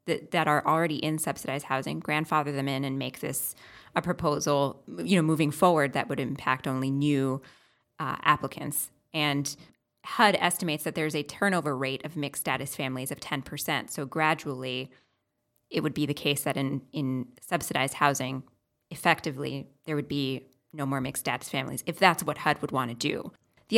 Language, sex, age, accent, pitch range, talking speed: English, female, 20-39, American, 140-170 Hz, 170 wpm